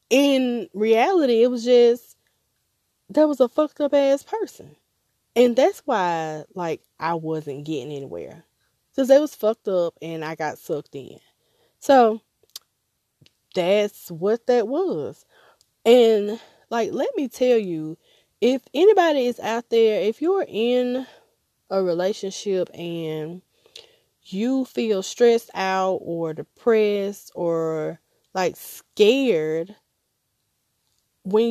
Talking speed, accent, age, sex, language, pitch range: 120 wpm, American, 20-39, female, English, 180-245 Hz